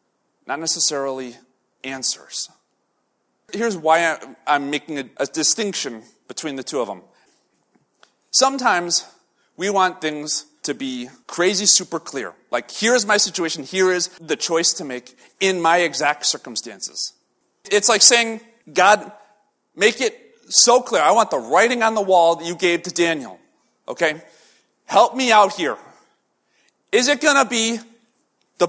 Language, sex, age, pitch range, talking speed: English, male, 30-49, 155-225 Hz, 145 wpm